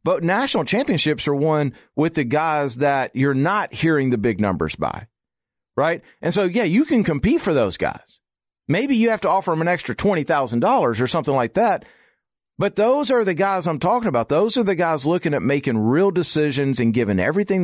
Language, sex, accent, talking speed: English, male, American, 200 wpm